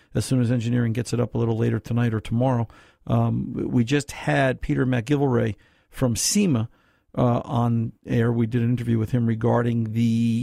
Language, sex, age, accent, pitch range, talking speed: English, male, 50-69, American, 110-130 Hz, 180 wpm